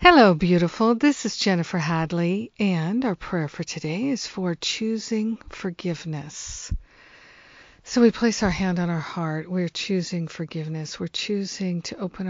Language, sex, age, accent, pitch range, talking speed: English, female, 50-69, American, 165-190 Hz, 145 wpm